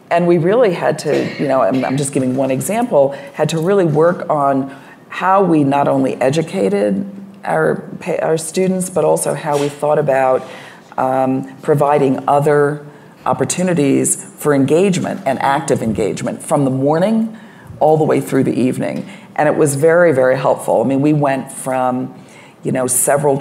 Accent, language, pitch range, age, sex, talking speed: American, English, 130-160 Hz, 40-59, female, 160 wpm